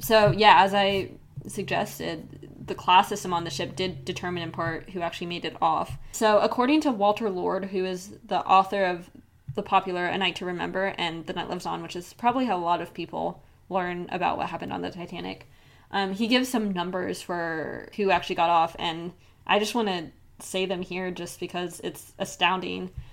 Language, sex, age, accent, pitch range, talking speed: English, female, 20-39, American, 175-215 Hz, 200 wpm